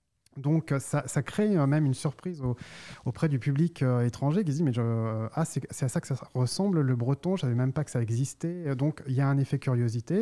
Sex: male